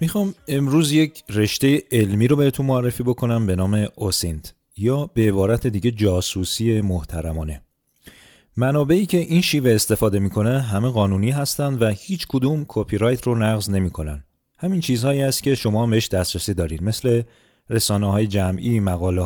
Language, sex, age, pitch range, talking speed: Persian, male, 30-49, 95-135 Hz, 145 wpm